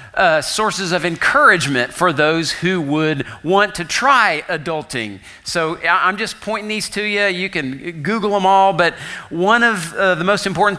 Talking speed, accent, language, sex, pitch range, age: 170 wpm, American, English, male, 150-195 Hz, 40-59